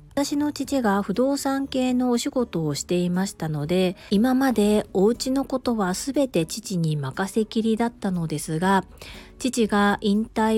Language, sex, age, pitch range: Japanese, female, 40-59, 175-240 Hz